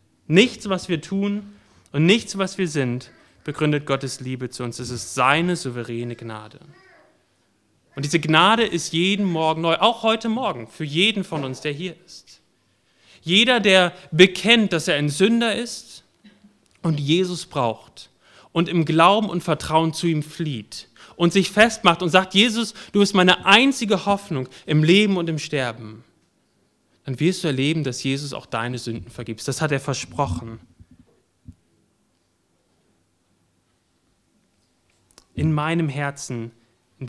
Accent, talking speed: German, 145 wpm